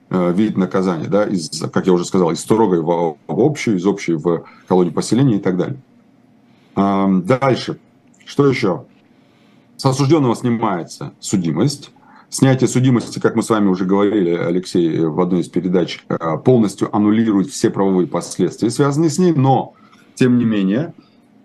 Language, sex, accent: Russian, male, native